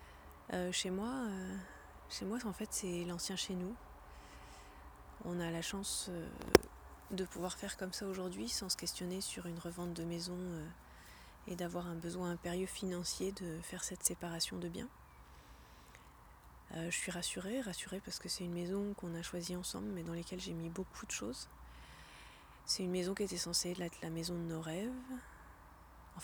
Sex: female